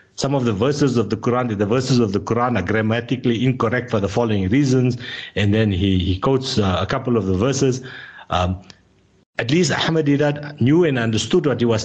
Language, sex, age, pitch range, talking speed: English, male, 60-79, 115-155 Hz, 205 wpm